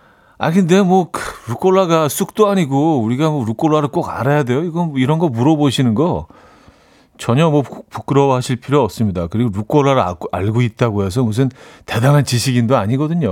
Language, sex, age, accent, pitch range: Korean, male, 40-59, native, 110-155 Hz